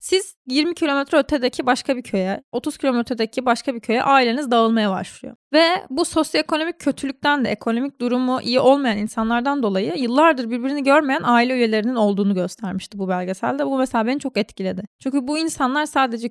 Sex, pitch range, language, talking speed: female, 220-285 Hz, Turkish, 165 wpm